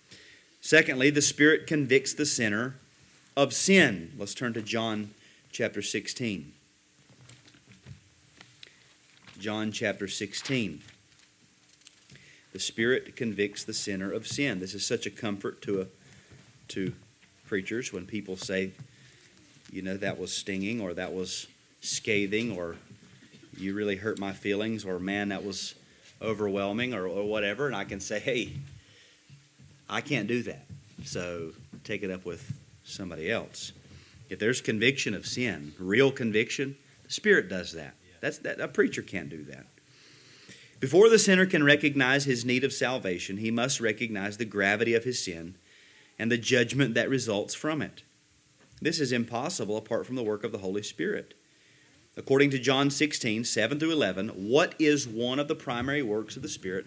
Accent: American